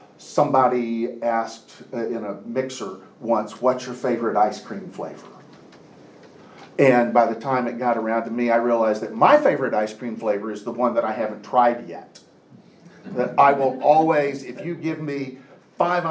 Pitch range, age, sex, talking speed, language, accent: 115-150 Hz, 50-69, male, 175 wpm, English, American